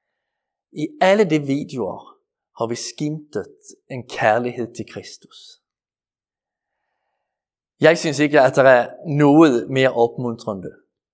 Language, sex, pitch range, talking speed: Danish, male, 120-150 Hz, 110 wpm